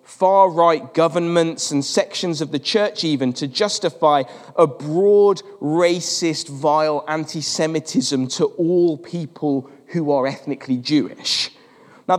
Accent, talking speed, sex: British, 115 wpm, male